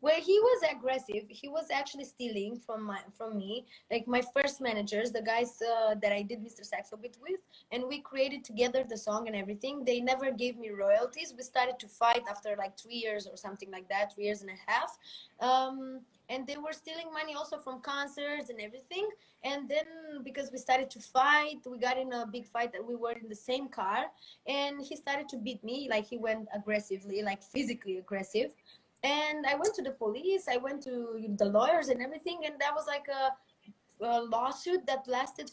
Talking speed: 205 wpm